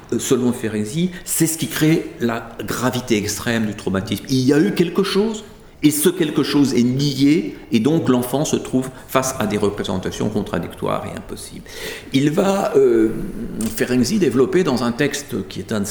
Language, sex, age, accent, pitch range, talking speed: French, male, 50-69, French, 115-170 Hz, 175 wpm